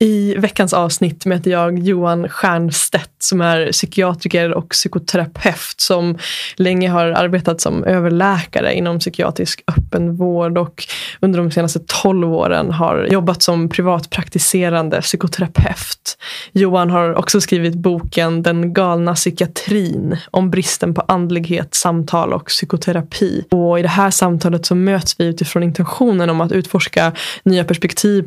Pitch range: 170-190 Hz